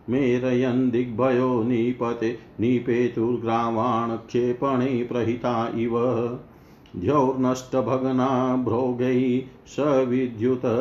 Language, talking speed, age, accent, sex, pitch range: Hindi, 60 wpm, 50-69, native, male, 120-130 Hz